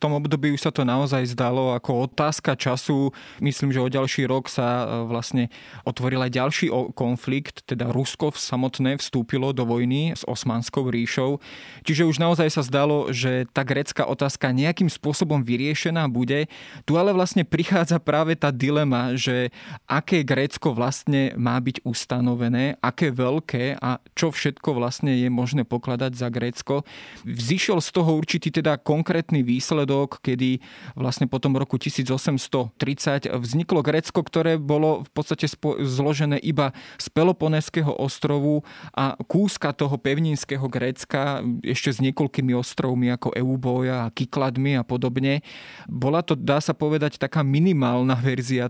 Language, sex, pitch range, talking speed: Slovak, male, 125-150 Hz, 145 wpm